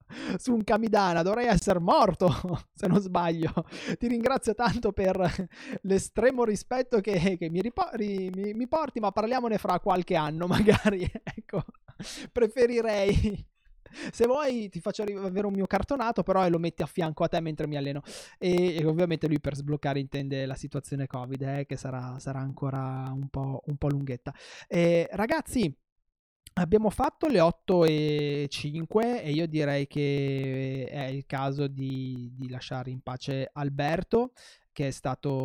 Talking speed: 155 wpm